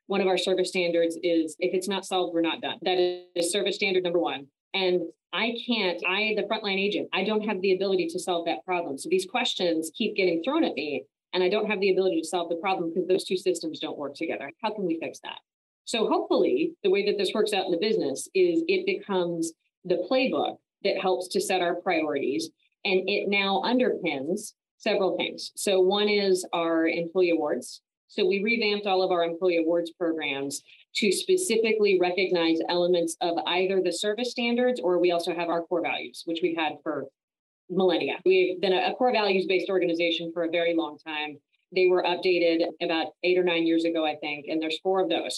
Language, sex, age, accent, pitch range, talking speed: English, female, 40-59, American, 170-205 Hz, 205 wpm